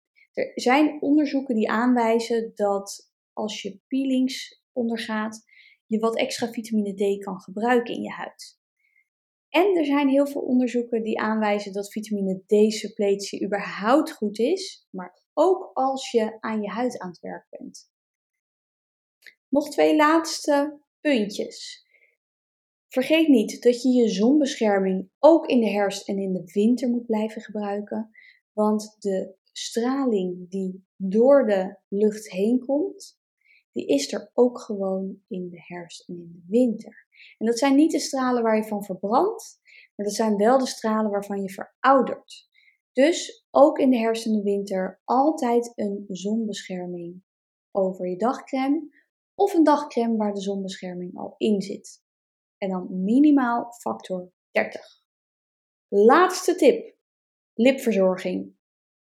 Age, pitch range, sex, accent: 20-39, 200-280 Hz, female, Dutch